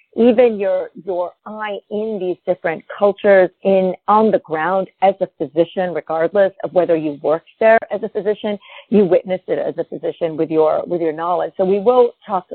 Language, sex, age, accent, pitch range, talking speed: English, female, 40-59, American, 175-220 Hz, 185 wpm